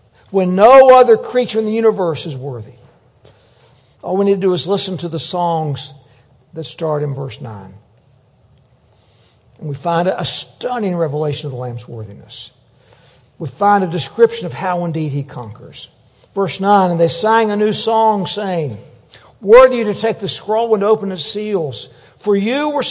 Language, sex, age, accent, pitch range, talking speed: English, male, 60-79, American, 130-220 Hz, 170 wpm